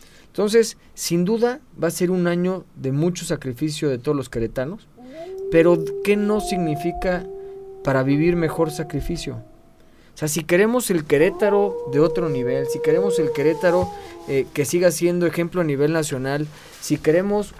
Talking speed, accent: 155 wpm, Mexican